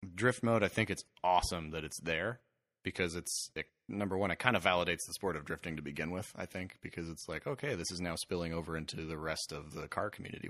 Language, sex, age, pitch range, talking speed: English, male, 30-49, 85-110 Hz, 245 wpm